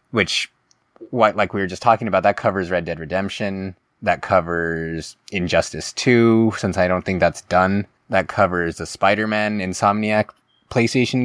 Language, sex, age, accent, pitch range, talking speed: English, male, 20-39, American, 90-105 Hz, 155 wpm